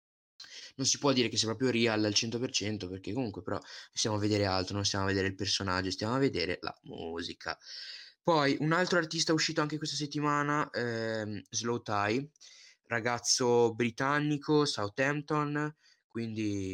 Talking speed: 155 wpm